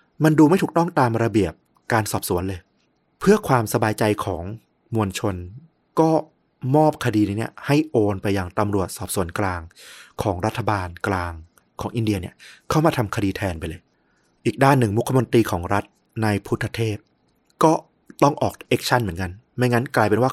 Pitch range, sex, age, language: 100-130 Hz, male, 30-49, Thai